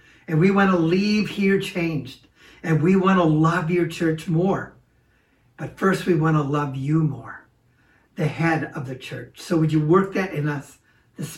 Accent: American